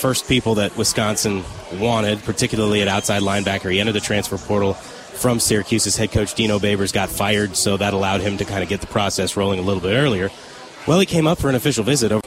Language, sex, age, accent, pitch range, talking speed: English, male, 30-49, American, 105-130 Hz, 220 wpm